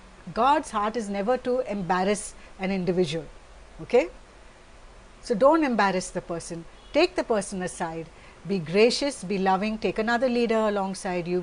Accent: Indian